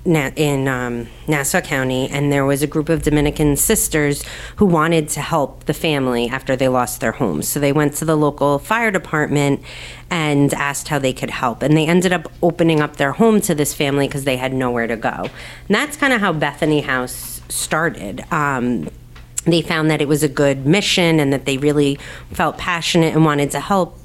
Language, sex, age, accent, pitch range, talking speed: English, female, 30-49, American, 135-170 Hz, 205 wpm